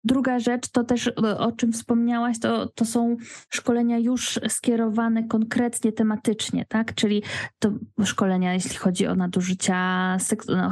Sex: female